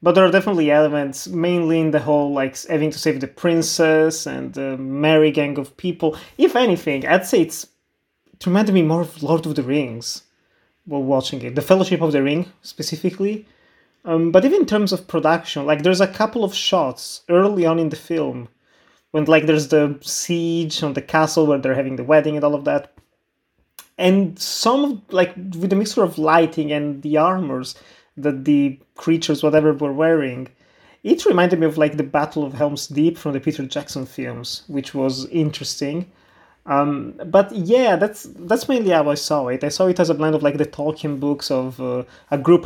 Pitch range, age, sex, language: 145-175 Hz, 20-39, male, English